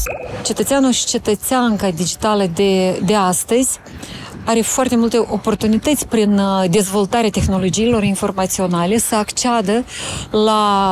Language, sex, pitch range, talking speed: Romanian, female, 200-235 Hz, 100 wpm